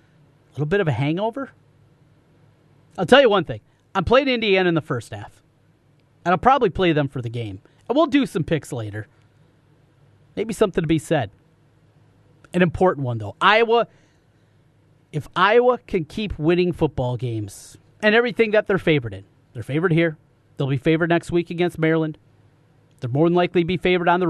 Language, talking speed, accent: English, 185 wpm, American